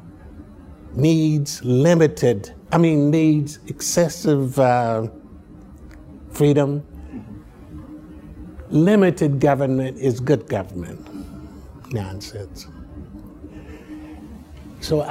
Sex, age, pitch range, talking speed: male, 60-79, 110-155 Hz, 60 wpm